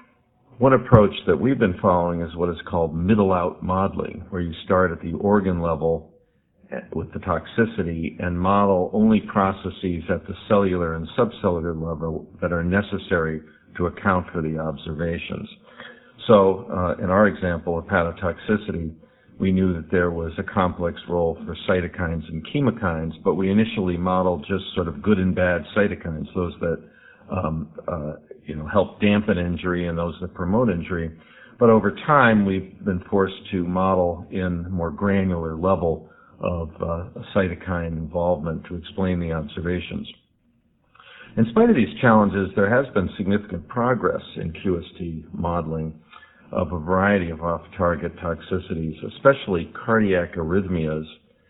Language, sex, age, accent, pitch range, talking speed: English, male, 50-69, American, 85-95 Hz, 145 wpm